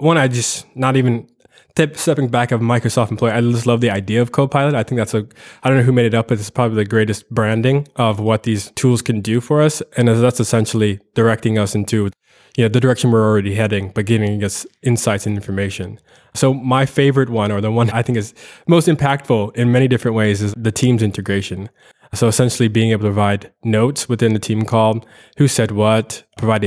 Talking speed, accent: 210 wpm, American